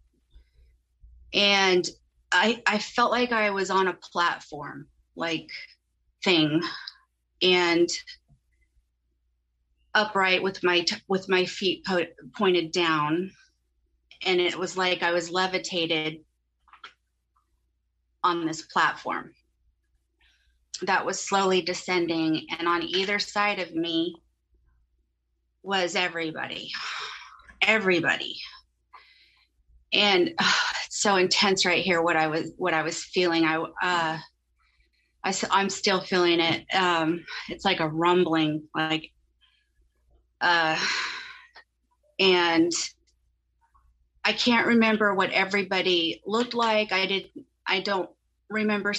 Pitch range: 155-190 Hz